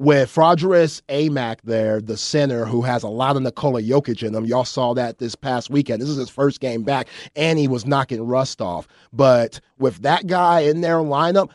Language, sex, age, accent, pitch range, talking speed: English, male, 30-49, American, 120-145 Hz, 210 wpm